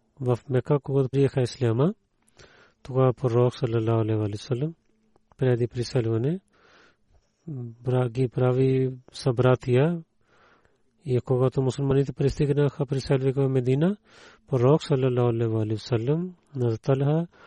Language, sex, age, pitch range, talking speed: Bulgarian, male, 40-59, 115-135 Hz, 100 wpm